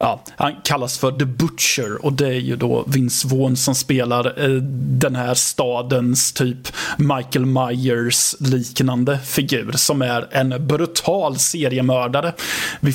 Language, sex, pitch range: Swedish, male, 130-145 Hz